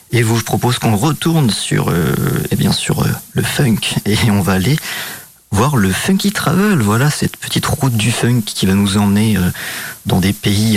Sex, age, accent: male, 40-59, French